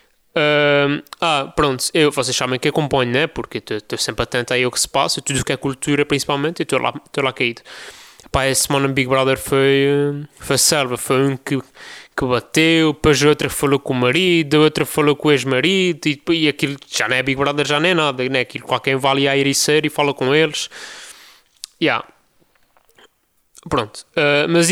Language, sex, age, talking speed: Portuguese, male, 20-39, 200 wpm